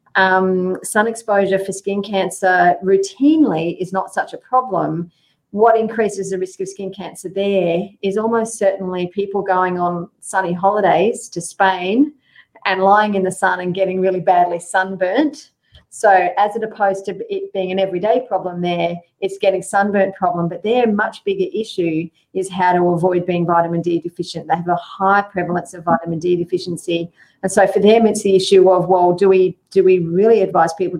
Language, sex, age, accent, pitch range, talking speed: English, female, 40-59, Australian, 175-200 Hz, 180 wpm